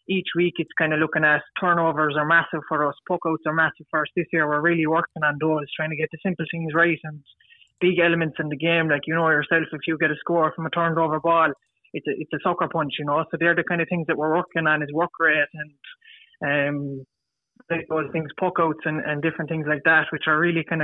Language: English